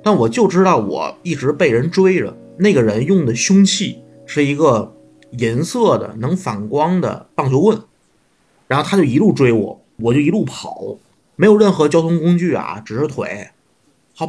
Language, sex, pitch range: Chinese, male, 115-165 Hz